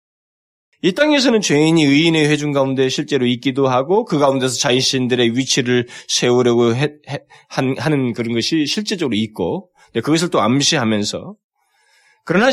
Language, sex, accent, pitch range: Korean, male, native, 105-160 Hz